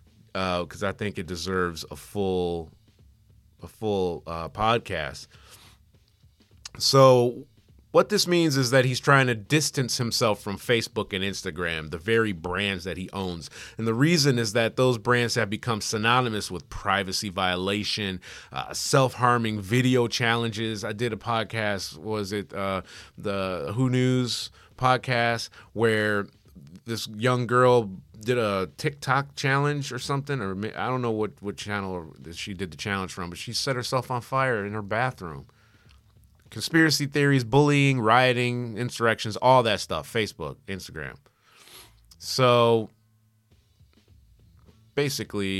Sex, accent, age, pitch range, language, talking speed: male, American, 30-49, 100-125 Hz, English, 140 wpm